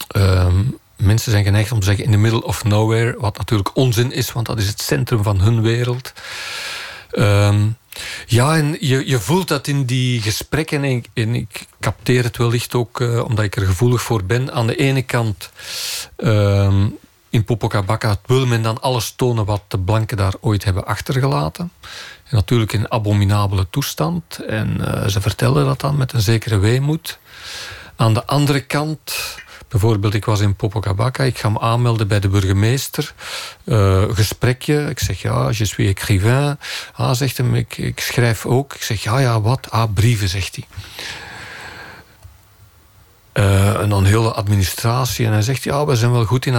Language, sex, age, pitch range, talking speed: Dutch, male, 40-59, 105-130 Hz, 180 wpm